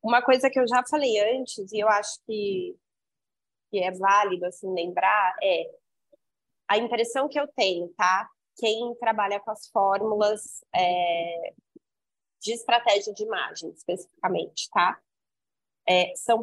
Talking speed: 125 wpm